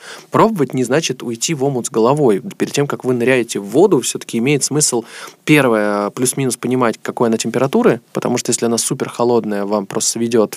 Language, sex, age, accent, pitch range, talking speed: Russian, male, 20-39, native, 115-150 Hz, 185 wpm